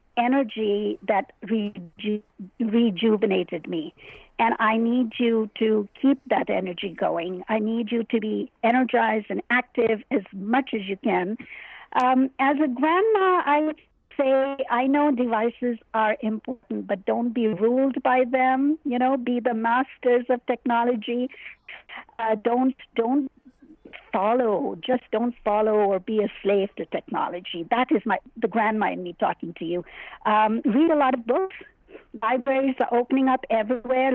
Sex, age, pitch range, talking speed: female, 60-79, 220-260 Hz, 150 wpm